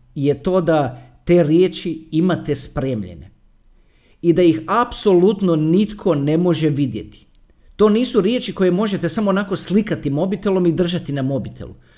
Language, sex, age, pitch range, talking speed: Croatian, male, 40-59, 155-215 Hz, 140 wpm